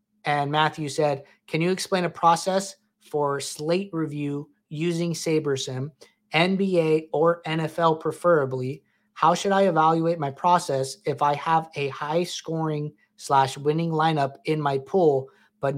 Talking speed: 135 wpm